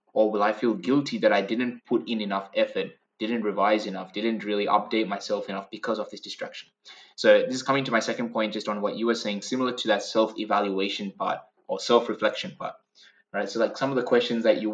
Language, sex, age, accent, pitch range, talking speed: English, male, 20-39, Australian, 105-130 Hz, 225 wpm